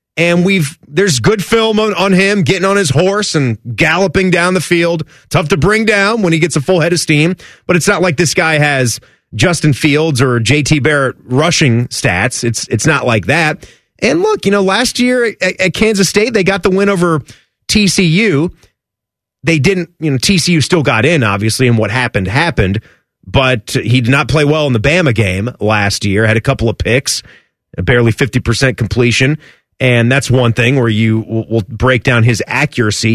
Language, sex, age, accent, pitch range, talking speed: English, male, 30-49, American, 120-175 Hz, 195 wpm